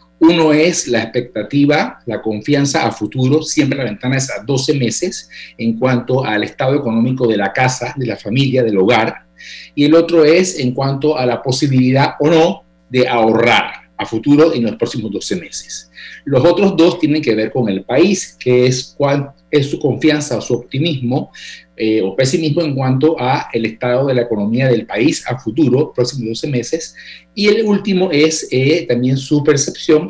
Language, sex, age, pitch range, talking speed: Spanish, male, 50-69, 120-160 Hz, 180 wpm